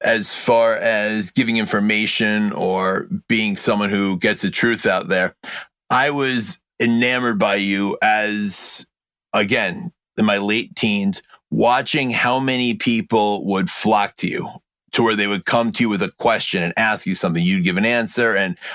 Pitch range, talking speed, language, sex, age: 100-125 Hz, 165 wpm, English, male, 30-49